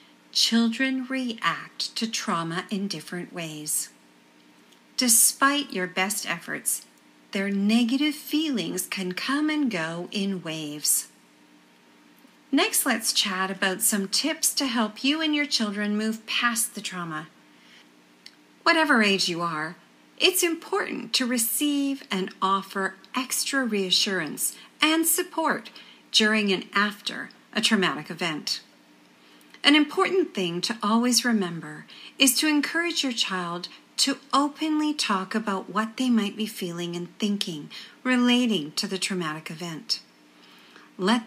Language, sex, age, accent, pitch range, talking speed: English, female, 40-59, American, 175-265 Hz, 120 wpm